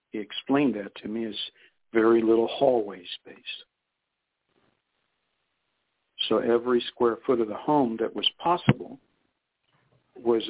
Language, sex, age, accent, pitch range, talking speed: English, male, 60-79, American, 105-120 Hz, 120 wpm